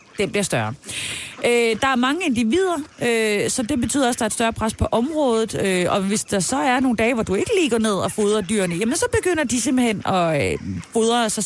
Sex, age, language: female, 30-49, Danish